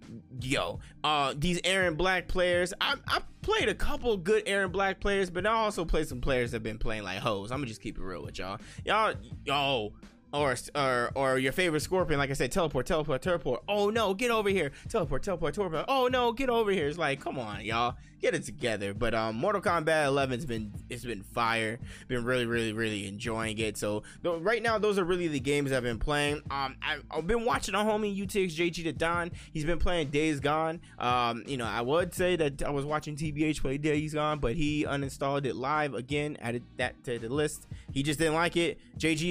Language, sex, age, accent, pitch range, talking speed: English, male, 20-39, American, 125-175 Hz, 215 wpm